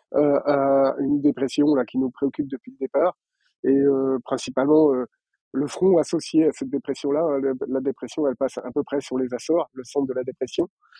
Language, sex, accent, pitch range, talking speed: French, male, French, 125-145 Hz, 200 wpm